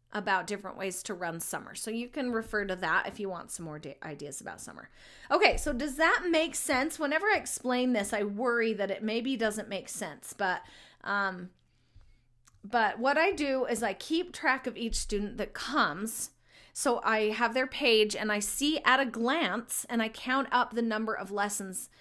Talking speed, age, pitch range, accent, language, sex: 195 wpm, 30-49, 205-260 Hz, American, English, female